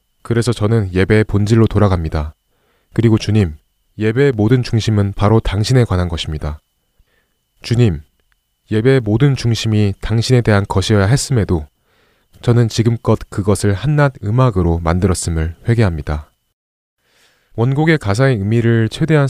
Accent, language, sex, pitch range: native, Korean, male, 95-125 Hz